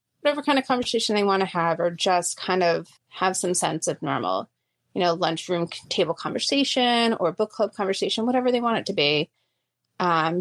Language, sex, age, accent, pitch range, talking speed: English, female, 30-49, American, 170-205 Hz, 190 wpm